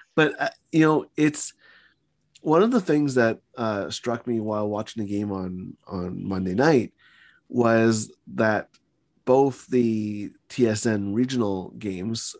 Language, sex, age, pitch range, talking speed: English, male, 30-49, 105-125 Hz, 135 wpm